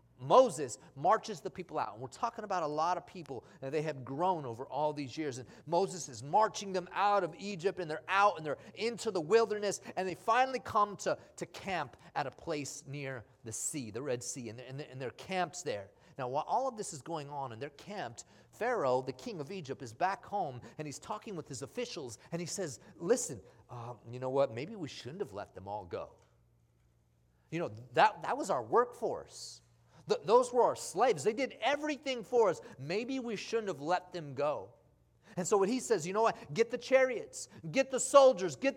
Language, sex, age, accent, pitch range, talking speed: English, male, 30-49, American, 140-230 Hz, 215 wpm